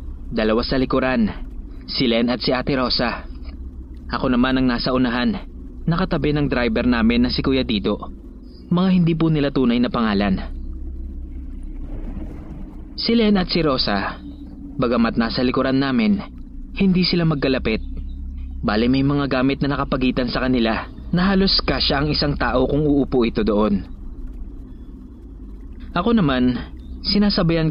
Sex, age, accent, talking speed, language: male, 20-39, Filipino, 130 wpm, English